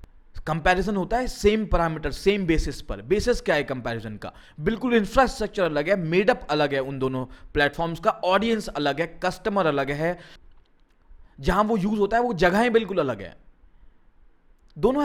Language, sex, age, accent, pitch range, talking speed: Hindi, male, 20-39, native, 130-200 Hz, 170 wpm